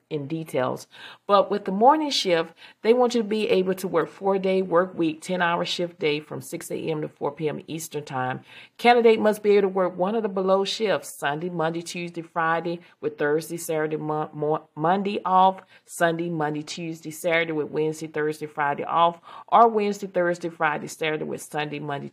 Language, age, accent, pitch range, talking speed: English, 40-59, American, 150-185 Hz, 180 wpm